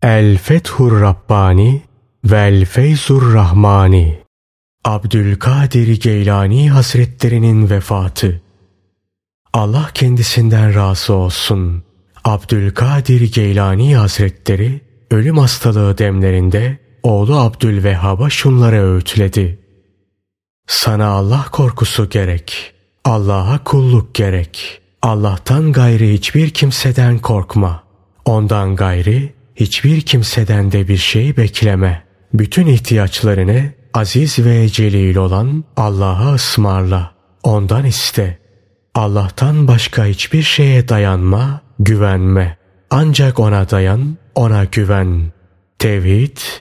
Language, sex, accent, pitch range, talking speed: Turkish, male, native, 95-125 Hz, 85 wpm